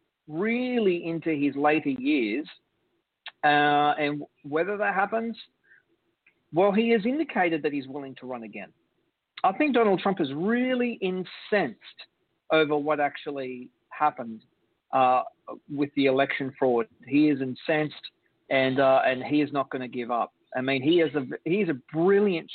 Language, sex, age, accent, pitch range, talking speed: English, male, 40-59, Australian, 140-190 Hz, 150 wpm